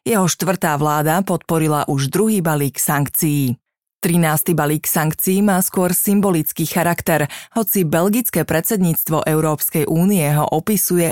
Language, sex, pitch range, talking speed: Slovak, female, 155-190 Hz, 120 wpm